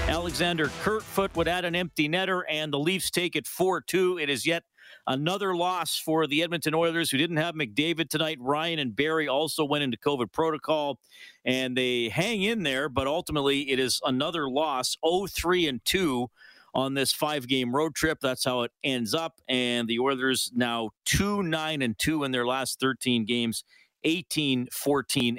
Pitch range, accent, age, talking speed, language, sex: 125-160 Hz, American, 40-59, 165 wpm, English, male